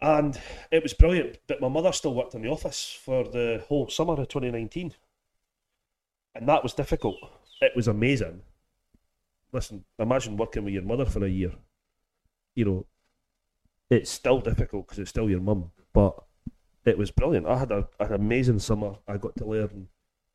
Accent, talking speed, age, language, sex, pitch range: British, 170 wpm, 30-49, English, male, 100-120 Hz